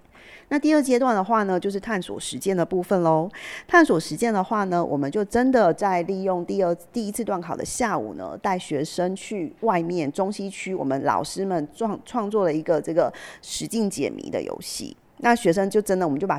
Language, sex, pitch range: Chinese, female, 165-210 Hz